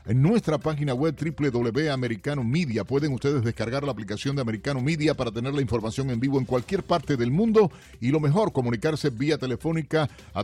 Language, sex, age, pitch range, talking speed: Spanish, male, 40-59, 120-155 Hz, 185 wpm